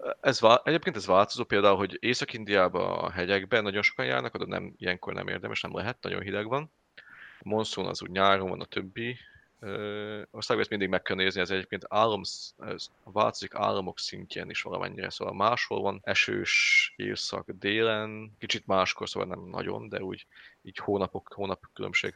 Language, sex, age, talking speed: Hungarian, male, 20-39, 170 wpm